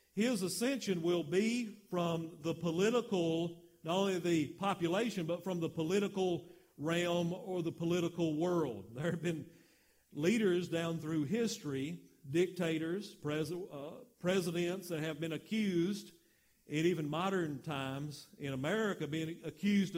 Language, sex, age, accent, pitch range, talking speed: English, male, 50-69, American, 150-175 Hz, 125 wpm